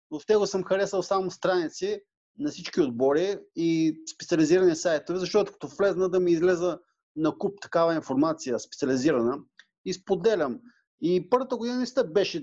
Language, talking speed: English, 145 wpm